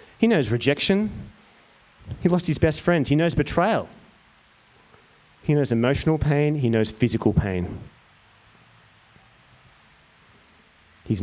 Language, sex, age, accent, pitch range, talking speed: English, male, 30-49, Australian, 105-130 Hz, 105 wpm